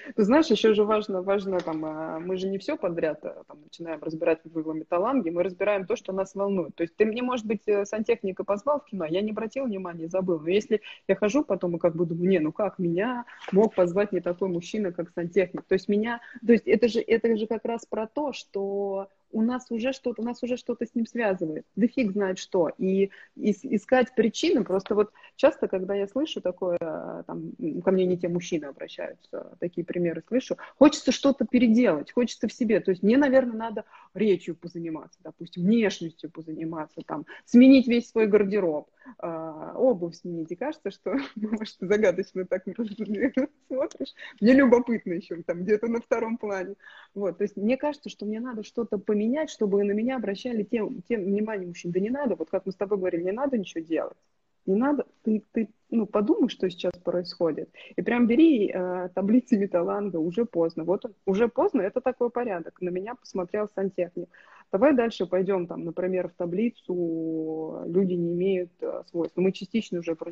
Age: 20-39